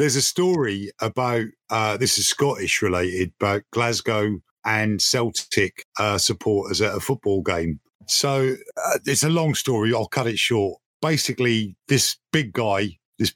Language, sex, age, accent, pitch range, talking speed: English, male, 50-69, British, 105-135 Hz, 155 wpm